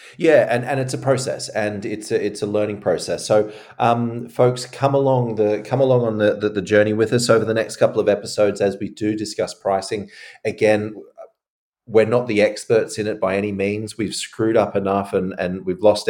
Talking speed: 215 wpm